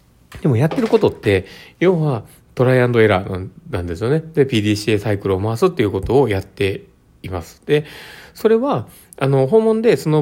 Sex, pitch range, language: male, 100-140 Hz, Japanese